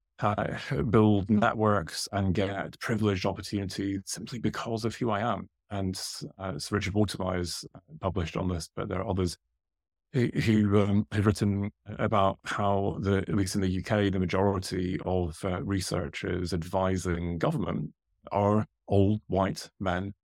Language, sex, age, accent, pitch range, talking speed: English, male, 30-49, British, 90-105 Hz, 150 wpm